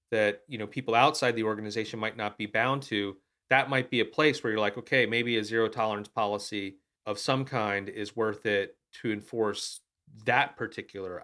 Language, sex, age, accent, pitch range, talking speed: English, male, 30-49, American, 105-135 Hz, 180 wpm